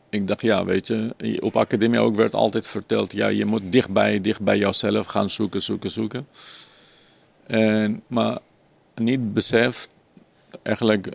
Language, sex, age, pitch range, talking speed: Dutch, male, 50-69, 100-110 Hz, 140 wpm